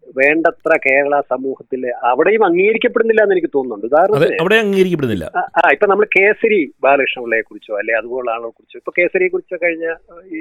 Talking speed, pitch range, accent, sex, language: 135 wpm, 145-235 Hz, native, male, Malayalam